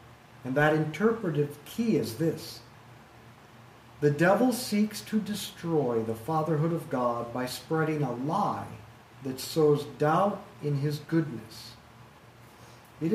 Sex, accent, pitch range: male, American, 120-160 Hz